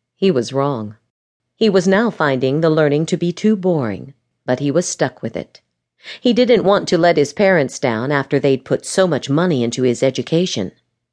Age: 50-69